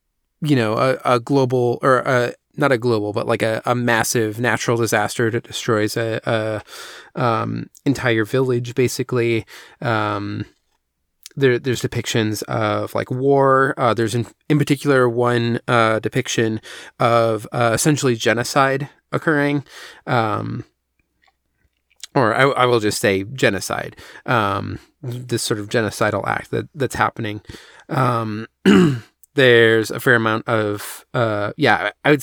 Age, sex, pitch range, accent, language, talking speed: 30-49, male, 110-130 Hz, American, English, 135 wpm